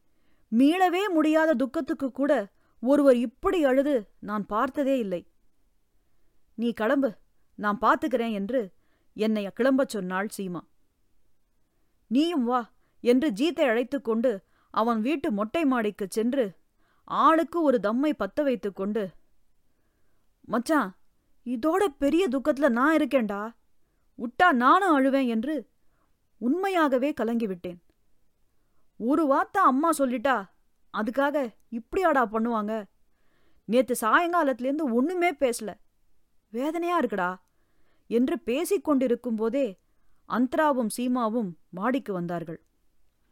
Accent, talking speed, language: Indian, 85 wpm, English